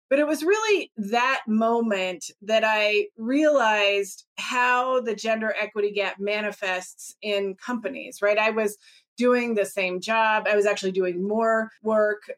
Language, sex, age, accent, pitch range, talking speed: English, female, 30-49, American, 195-245 Hz, 145 wpm